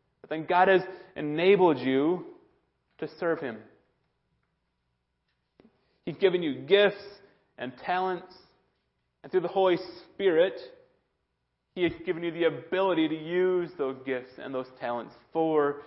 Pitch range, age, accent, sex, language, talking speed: 115-175 Hz, 30-49, American, male, English, 130 wpm